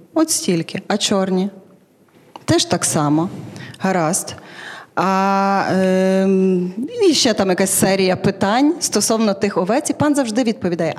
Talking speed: 125 wpm